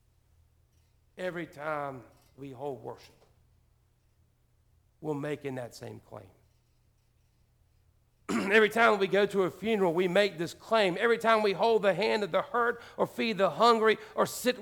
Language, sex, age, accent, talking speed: English, male, 60-79, American, 150 wpm